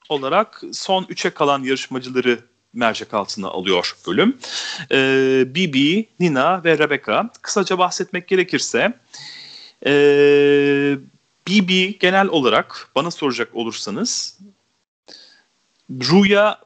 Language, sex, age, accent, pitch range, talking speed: Turkish, male, 40-59, native, 115-180 Hz, 90 wpm